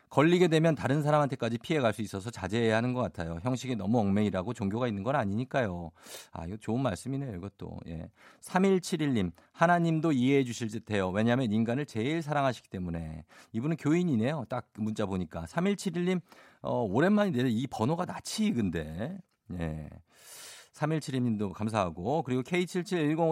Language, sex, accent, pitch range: Korean, male, native, 105-165 Hz